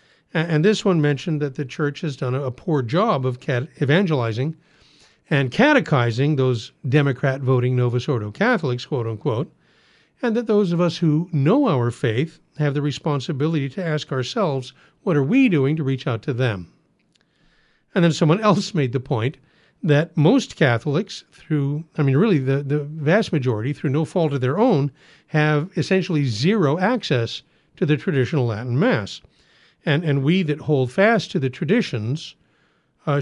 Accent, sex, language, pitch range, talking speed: American, male, English, 130-165 Hz, 160 wpm